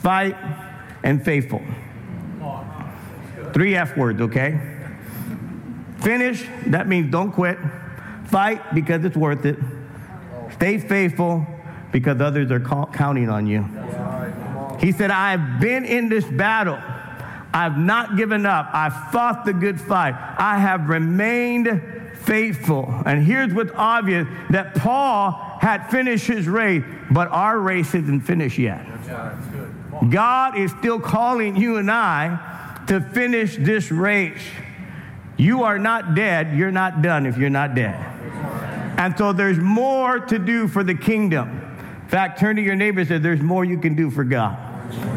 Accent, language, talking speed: American, English, 145 wpm